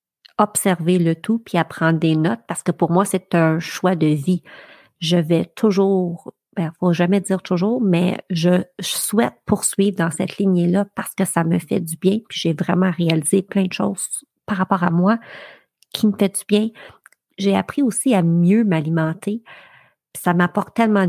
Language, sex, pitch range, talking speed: French, female, 170-210 Hz, 185 wpm